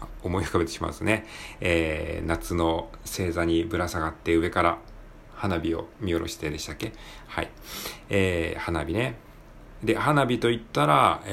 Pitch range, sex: 85-110 Hz, male